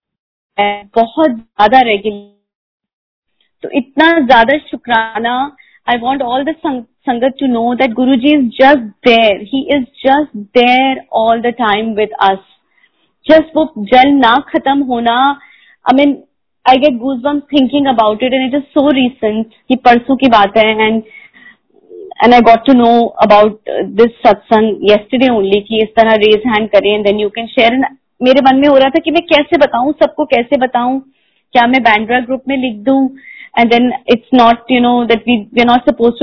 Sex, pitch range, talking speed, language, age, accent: female, 220-270 Hz, 140 wpm, Hindi, 30-49, native